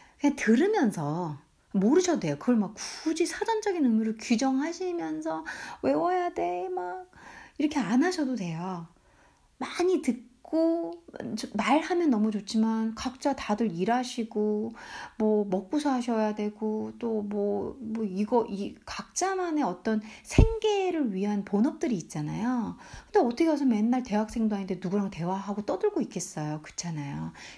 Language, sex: Korean, female